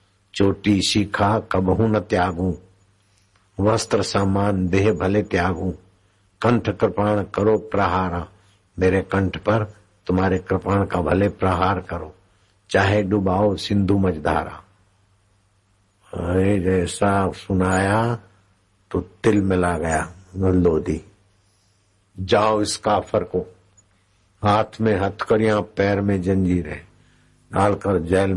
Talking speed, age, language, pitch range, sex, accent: 100 wpm, 60-79, Hindi, 95-105 Hz, male, native